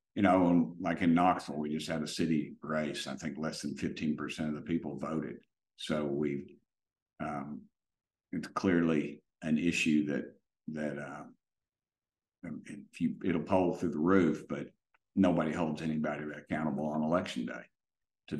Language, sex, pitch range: English, male, 75-95 Hz